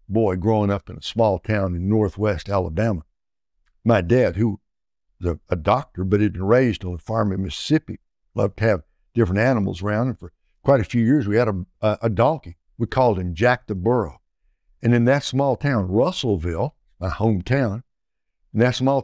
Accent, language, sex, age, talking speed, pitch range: American, English, male, 60-79, 190 wpm, 95-120 Hz